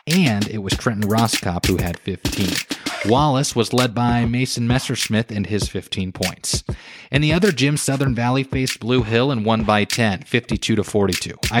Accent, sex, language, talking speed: American, male, English, 165 wpm